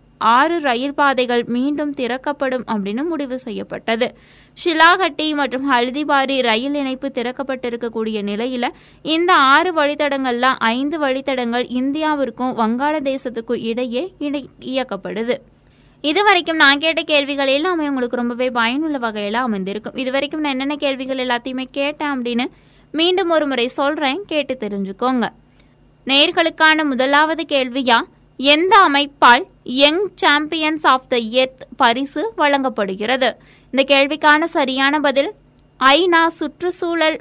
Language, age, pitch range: Tamil, 20-39, 250-300 Hz